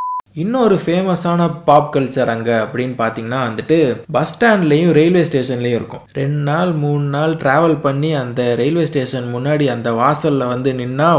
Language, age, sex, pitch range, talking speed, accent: Tamil, 20-39, male, 125-165 Hz, 145 wpm, native